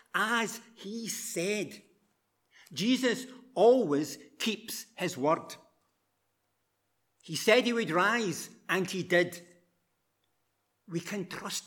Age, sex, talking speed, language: 60-79, male, 100 wpm, English